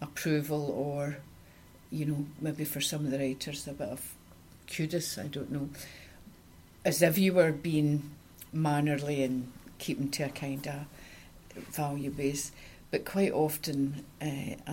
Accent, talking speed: British, 145 wpm